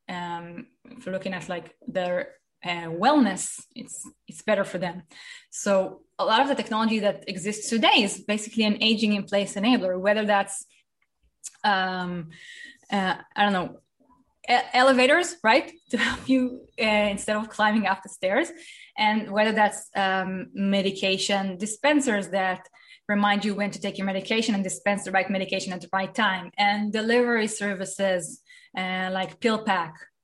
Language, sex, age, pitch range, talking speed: English, female, 20-39, 190-240 Hz, 155 wpm